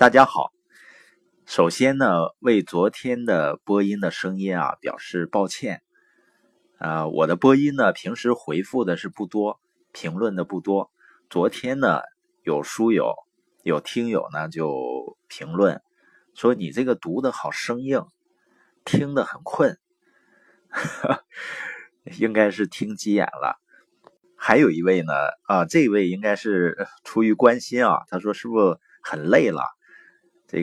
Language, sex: Chinese, male